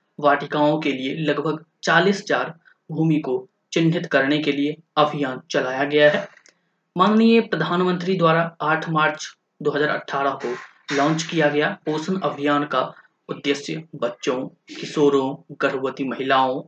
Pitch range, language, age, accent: 140-170 Hz, Hindi, 20-39, native